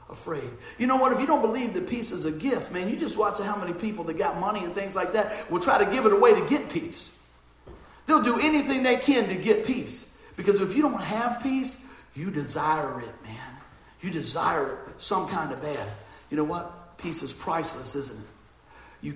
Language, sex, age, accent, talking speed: English, male, 50-69, American, 220 wpm